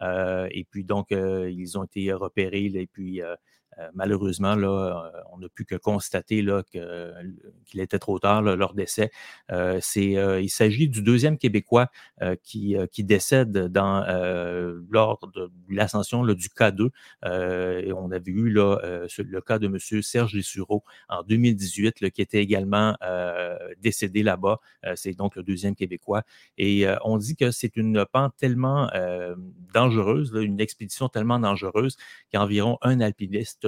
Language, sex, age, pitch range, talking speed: French, male, 30-49, 95-110 Hz, 170 wpm